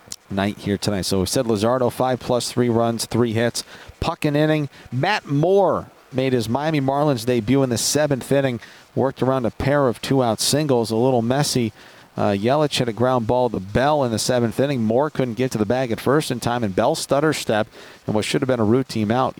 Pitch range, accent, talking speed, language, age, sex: 110-130 Hz, American, 225 wpm, English, 50-69, male